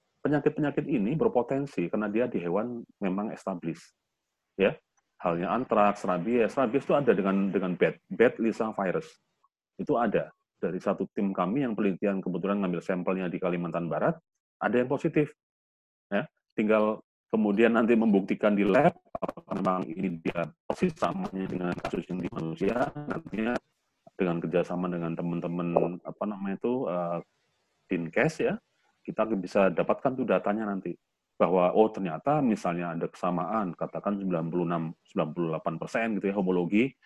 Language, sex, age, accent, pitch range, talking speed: Indonesian, male, 30-49, native, 85-110 Hz, 140 wpm